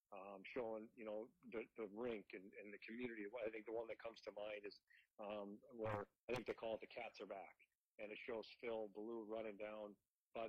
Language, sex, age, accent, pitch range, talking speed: English, male, 40-59, American, 105-120 Hz, 225 wpm